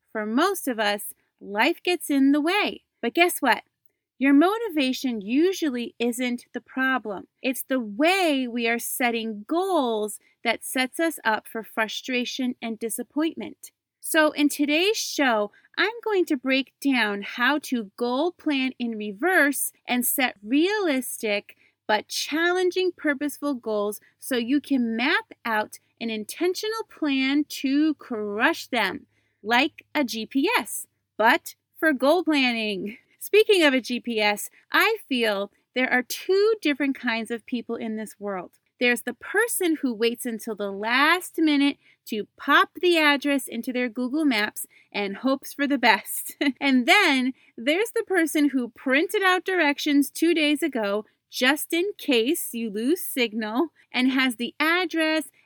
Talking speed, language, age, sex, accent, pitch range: 145 wpm, English, 30-49, female, American, 235-320 Hz